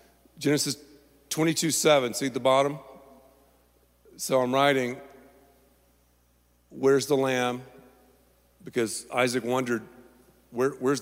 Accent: American